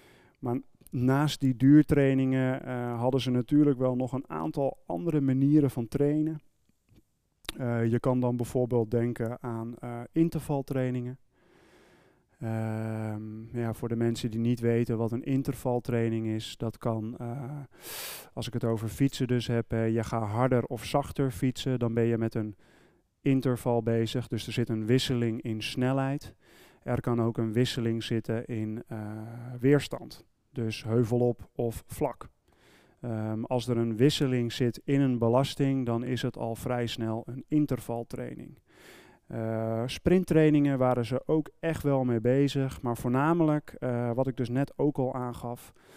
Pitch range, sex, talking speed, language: 115-135 Hz, male, 155 wpm, Dutch